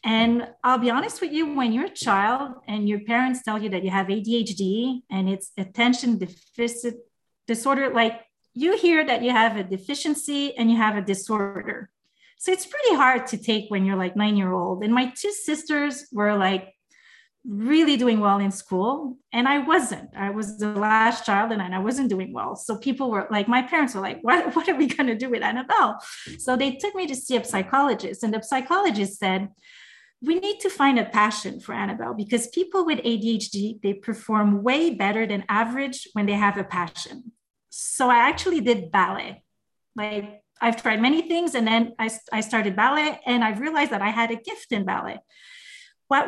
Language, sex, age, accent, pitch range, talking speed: English, female, 30-49, Canadian, 205-270 Hz, 195 wpm